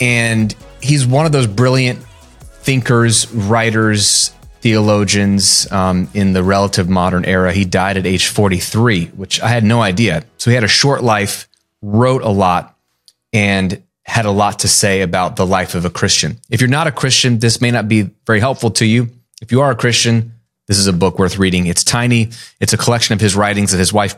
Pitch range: 95-115 Hz